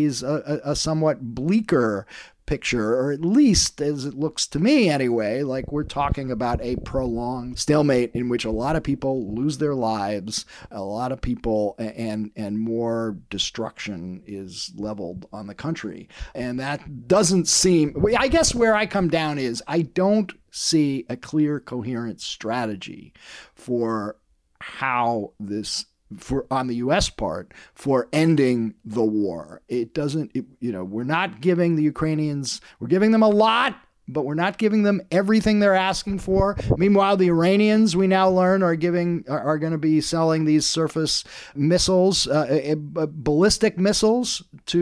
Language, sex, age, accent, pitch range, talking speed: English, male, 50-69, American, 125-185 Hz, 160 wpm